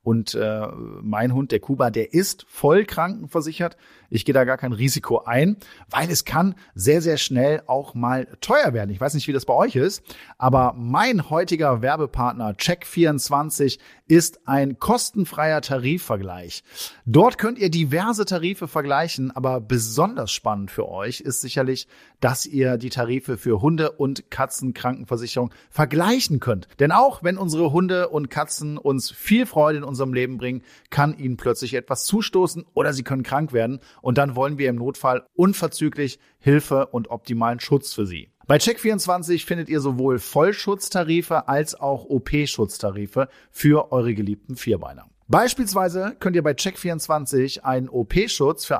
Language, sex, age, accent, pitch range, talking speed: German, male, 40-59, German, 125-165 Hz, 155 wpm